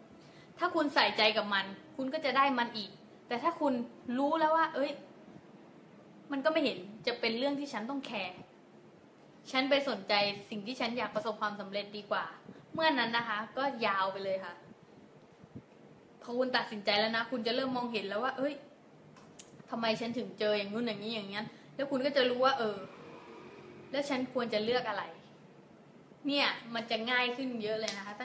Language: English